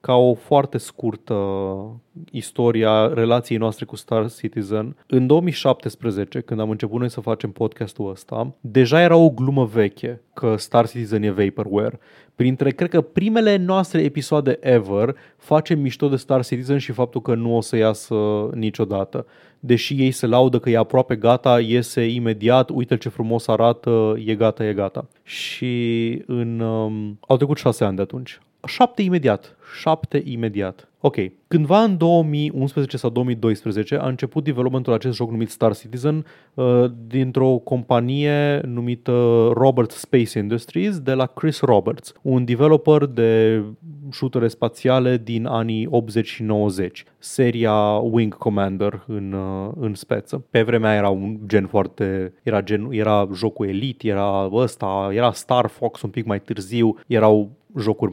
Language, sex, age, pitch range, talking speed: Romanian, male, 20-39, 110-130 Hz, 145 wpm